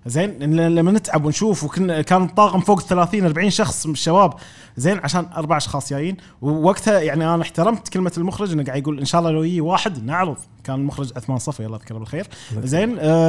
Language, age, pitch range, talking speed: Arabic, 20-39, 140-195 Hz, 185 wpm